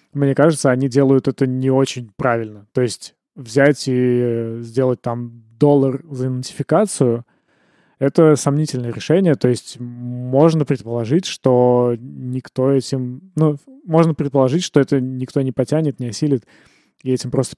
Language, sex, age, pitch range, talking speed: Russian, male, 20-39, 125-150 Hz, 135 wpm